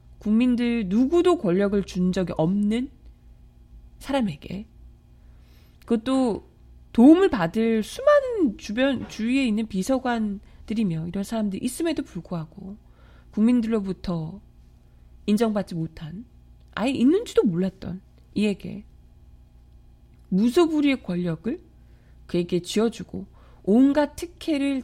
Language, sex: Korean, female